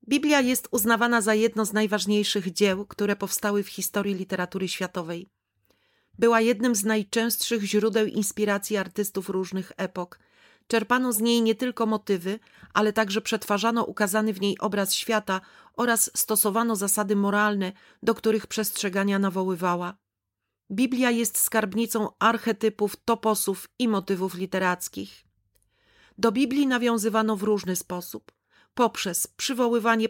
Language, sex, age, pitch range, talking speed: Polish, female, 40-59, 190-225 Hz, 120 wpm